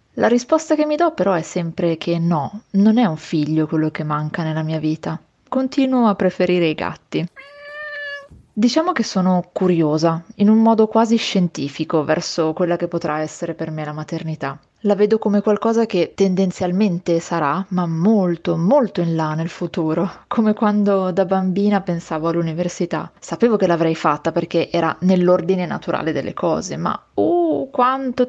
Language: Italian